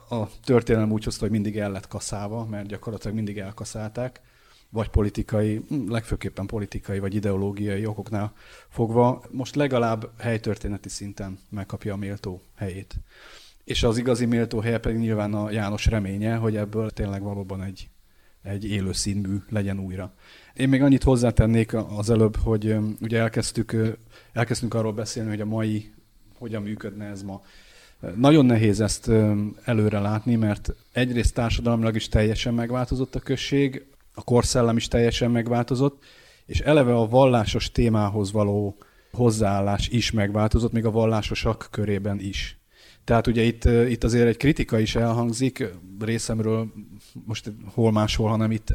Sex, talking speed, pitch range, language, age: male, 140 wpm, 105-115 Hz, Hungarian, 30-49